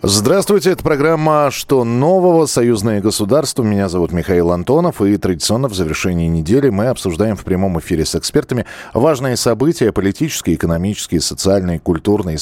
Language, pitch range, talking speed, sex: Russian, 90-135 Hz, 140 wpm, male